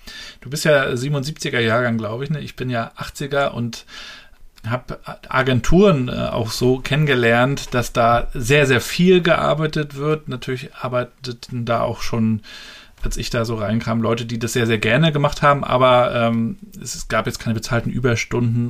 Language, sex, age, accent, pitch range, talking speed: German, male, 40-59, German, 115-140 Hz, 160 wpm